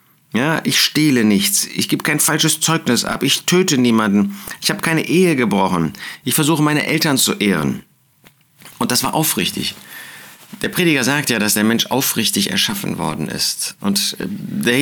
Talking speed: 165 wpm